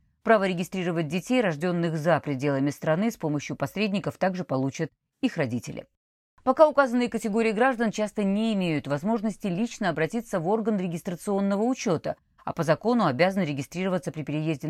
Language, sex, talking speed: Russian, female, 145 wpm